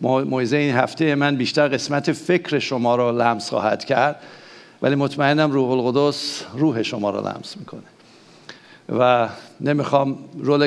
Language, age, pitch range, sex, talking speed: English, 60-79, 135-160 Hz, male, 135 wpm